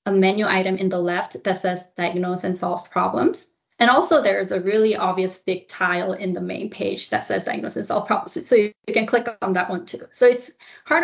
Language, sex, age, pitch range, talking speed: English, female, 20-39, 190-235 Hz, 235 wpm